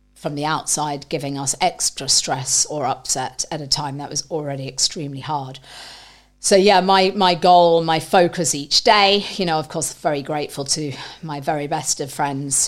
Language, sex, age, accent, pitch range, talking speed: English, female, 40-59, British, 140-185 Hz, 180 wpm